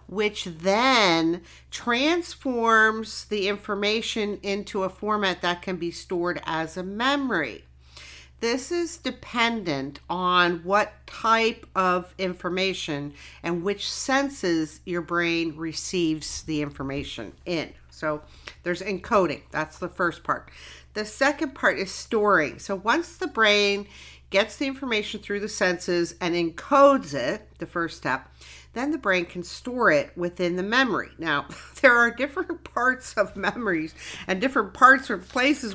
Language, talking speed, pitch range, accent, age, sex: English, 135 wpm, 175-225 Hz, American, 50-69, female